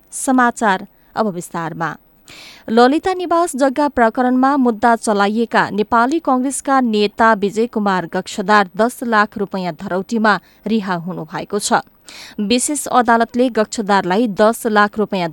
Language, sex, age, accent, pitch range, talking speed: English, female, 20-39, Indian, 190-245 Hz, 140 wpm